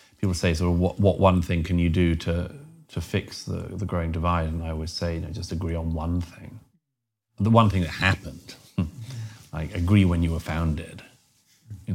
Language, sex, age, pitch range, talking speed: English, male, 40-59, 85-110 Hz, 200 wpm